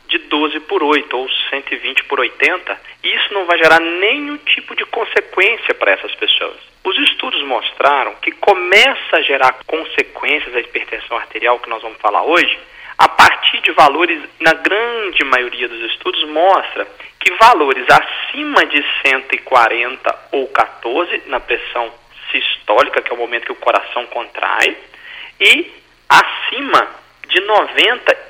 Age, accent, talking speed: 40-59, Brazilian, 145 wpm